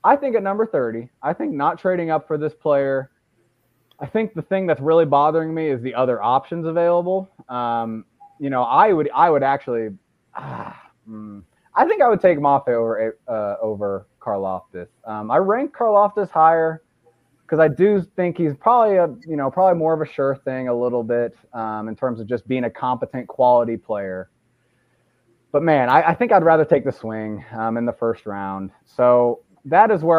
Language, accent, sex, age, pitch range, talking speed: English, American, male, 20-39, 115-155 Hz, 200 wpm